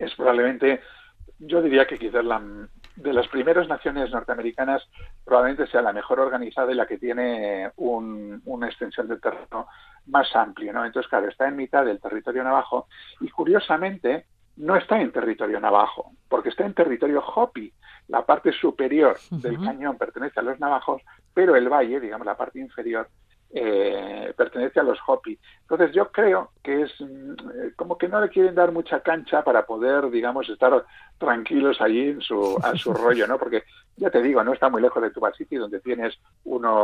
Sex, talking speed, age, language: male, 175 wpm, 50-69, Spanish